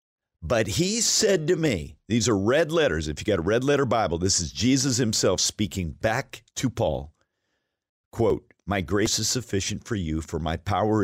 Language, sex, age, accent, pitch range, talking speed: English, male, 50-69, American, 80-115 Hz, 185 wpm